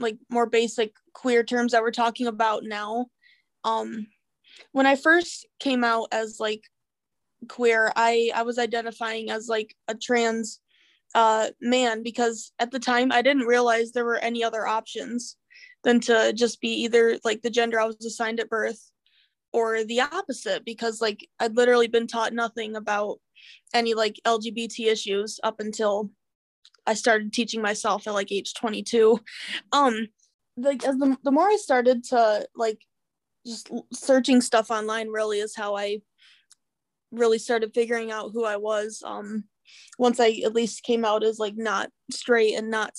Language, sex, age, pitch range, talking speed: English, female, 20-39, 220-240 Hz, 165 wpm